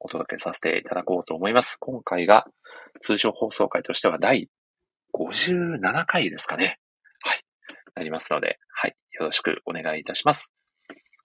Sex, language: male, Japanese